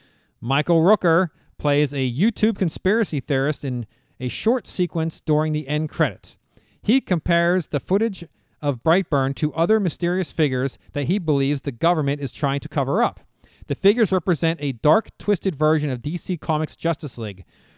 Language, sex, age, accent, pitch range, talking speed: English, male, 40-59, American, 135-180 Hz, 160 wpm